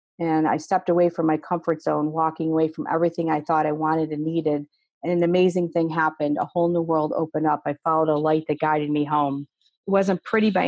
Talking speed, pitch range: 230 wpm, 160-180 Hz